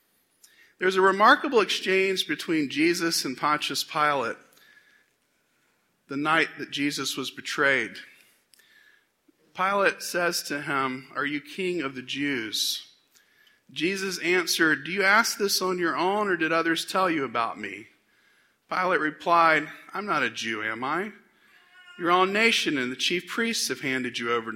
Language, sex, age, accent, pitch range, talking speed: English, male, 50-69, American, 135-210 Hz, 145 wpm